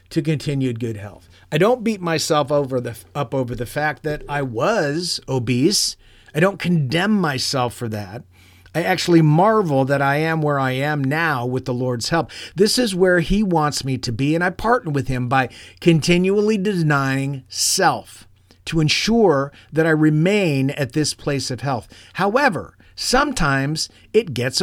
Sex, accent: male, American